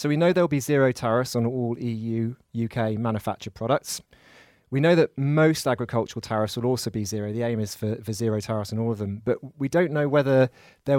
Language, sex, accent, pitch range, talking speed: English, male, British, 110-130 Hz, 215 wpm